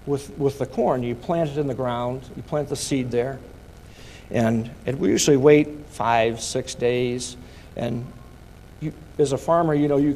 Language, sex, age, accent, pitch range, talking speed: English, male, 50-69, American, 125-180 Hz, 185 wpm